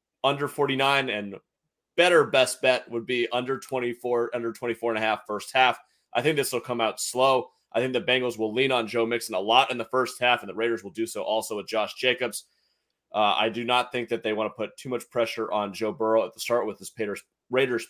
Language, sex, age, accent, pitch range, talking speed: English, male, 30-49, American, 115-130 Hz, 240 wpm